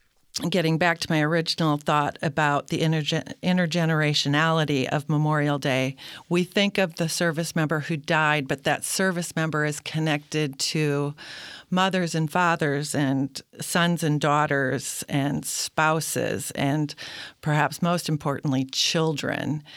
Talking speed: 125 wpm